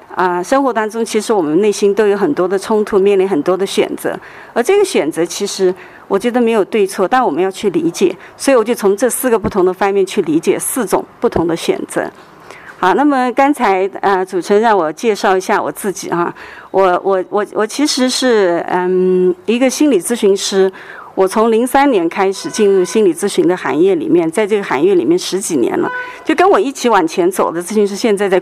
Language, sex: Chinese, female